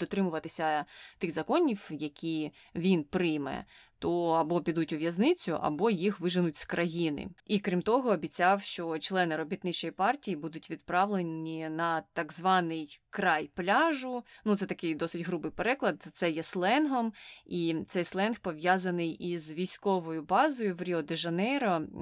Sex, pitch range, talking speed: female, 165-200 Hz, 140 wpm